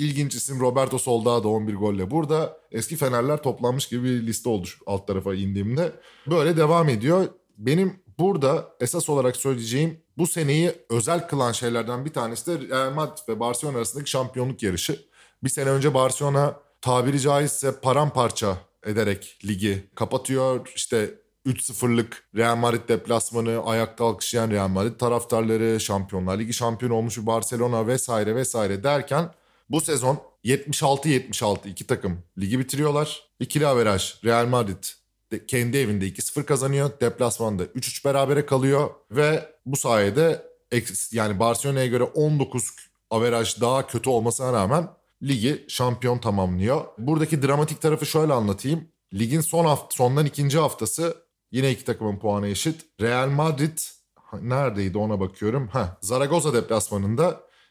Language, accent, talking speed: Turkish, native, 135 wpm